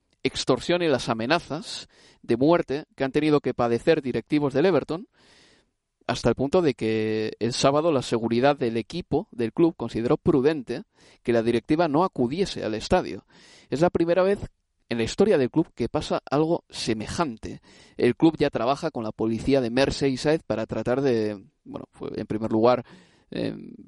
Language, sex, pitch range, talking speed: Spanish, male, 115-170 Hz, 165 wpm